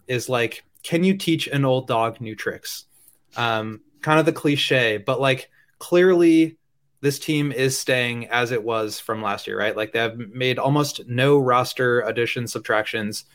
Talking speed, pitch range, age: 170 wpm, 115-145 Hz, 20-39